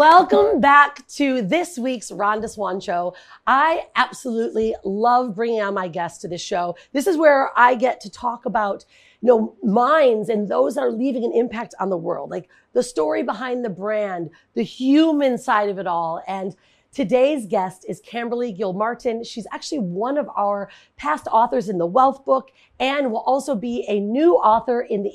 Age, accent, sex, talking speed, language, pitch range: 40-59, American, female, 185 wpm, English, 200-255 Hz